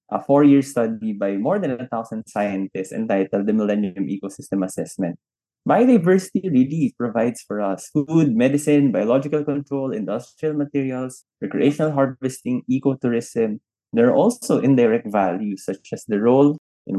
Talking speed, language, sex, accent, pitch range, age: 130 wpm, Finnish, male, Filipino, 105-145 Hz, 20-39